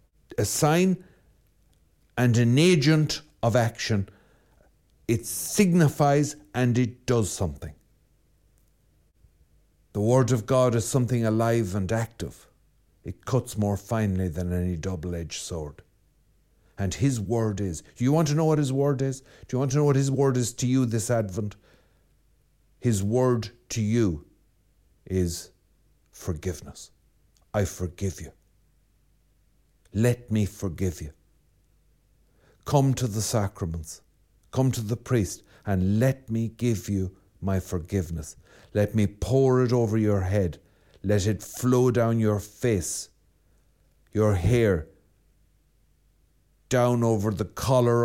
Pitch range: 90-120 Hz